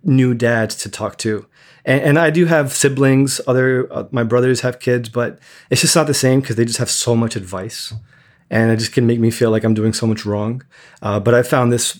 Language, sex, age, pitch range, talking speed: English, male, 20-39, 110-125 Hz, 240 wpm